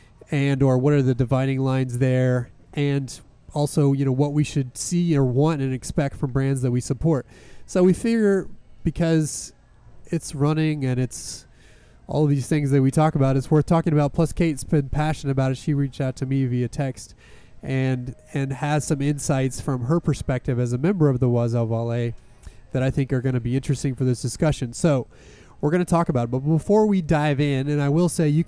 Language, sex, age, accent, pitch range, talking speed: English, male, 30-49, American, 125-150 Hz, 210 wpm